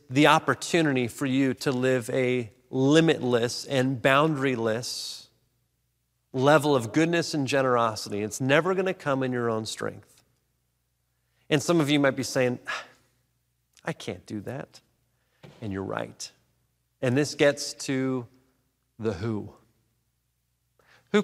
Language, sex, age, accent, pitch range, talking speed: English, male, 30-49, American, 120-145 Hz, 125 wpm